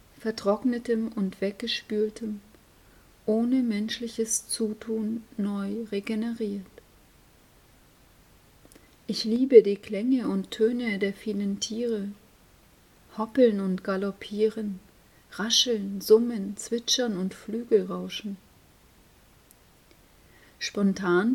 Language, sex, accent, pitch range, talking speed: German, female, German, 200-230 Hz, 75 wpm